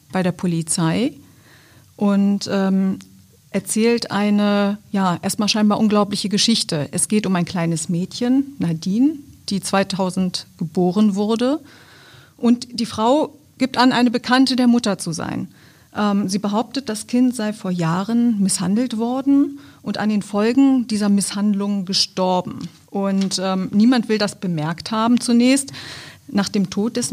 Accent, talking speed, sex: German, 140 wpm, female